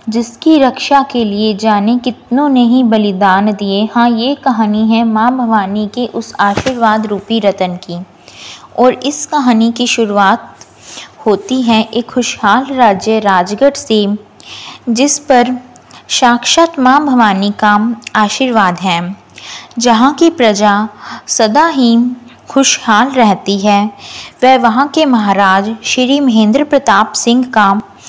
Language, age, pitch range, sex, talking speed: Hindi, 20-39, 210-250 Hz, female, 125 wpm